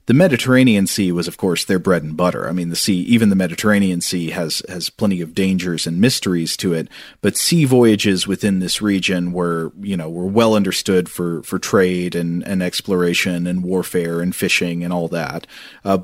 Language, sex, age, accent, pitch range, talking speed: English, male, 40-59, American, 90-105 Hz, 200 wpm